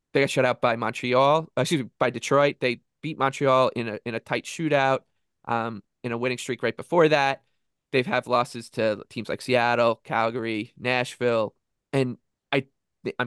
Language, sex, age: English, male, 20-39